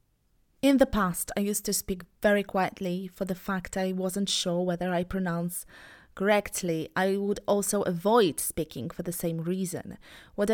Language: Polish